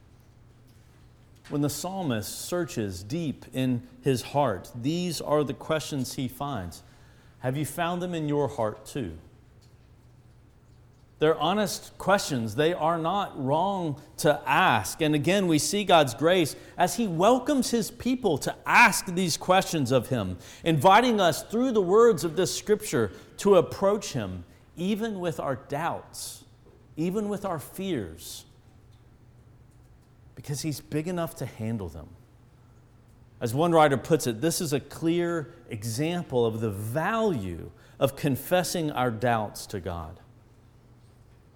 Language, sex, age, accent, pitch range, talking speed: English, male, 40-59, American, 115-165 Hz, 135 wpm